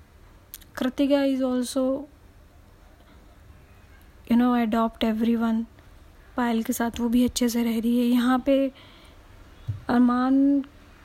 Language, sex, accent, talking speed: Hindi, female, native, 110 wpm